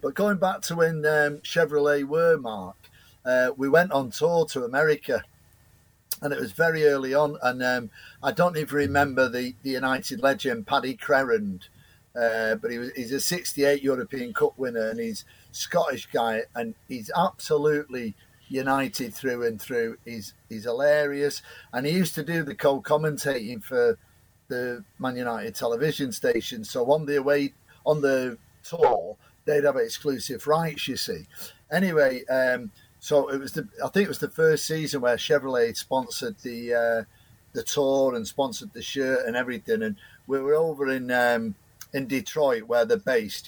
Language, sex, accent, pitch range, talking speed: English, male, British, 125-165 Hz, 165 wpm